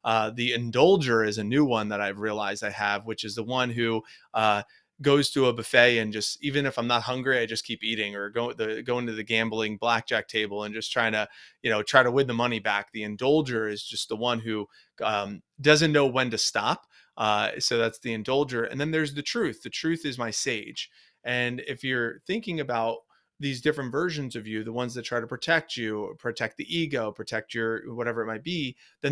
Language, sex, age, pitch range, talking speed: English, male, 30-49, 110-145 Hz, 225 wpm